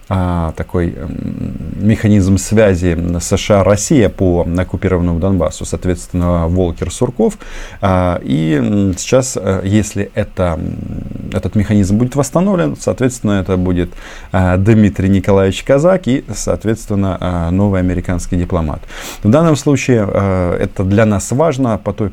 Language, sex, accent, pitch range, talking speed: Russian, male, native, 90-110 Hz, 100 wpm